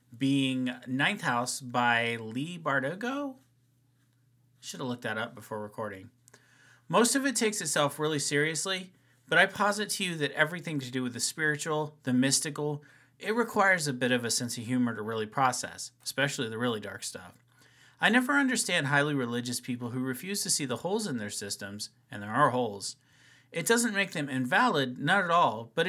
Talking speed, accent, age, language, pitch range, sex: 185 wpm, American, 30-49, English, 125-165 Hz, male